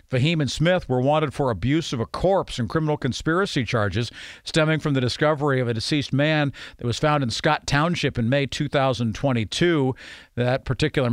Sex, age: male, 50-69